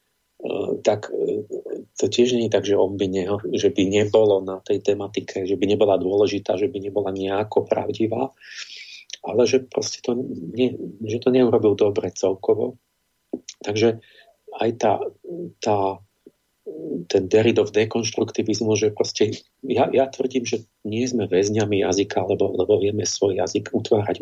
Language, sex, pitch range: Slovak, male, 100-120 Hz